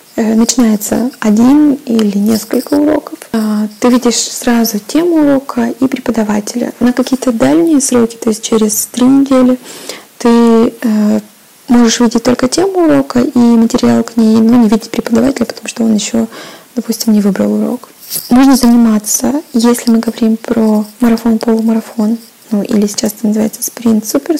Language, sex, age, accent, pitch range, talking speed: Russian, female, 20-39, native, 225-265 Hz, 140 wpm